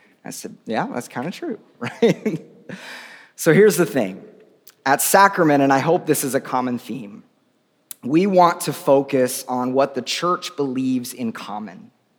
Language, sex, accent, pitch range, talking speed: English, male, American, 130-175 Hz, 160 wpm